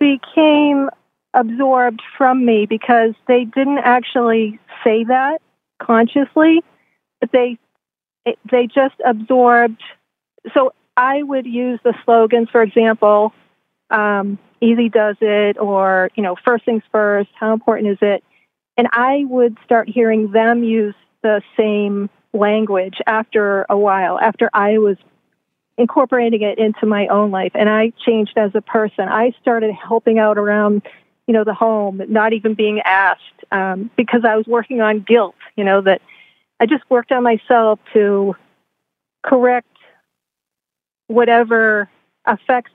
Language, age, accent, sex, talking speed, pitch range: English, 40-59, American, female, 140 wpm, 210-240 Hz